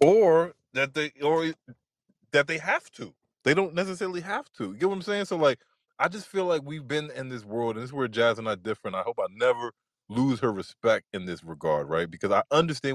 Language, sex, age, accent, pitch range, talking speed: English, male, 20-39, American, 105-180 Hz, 235 wpm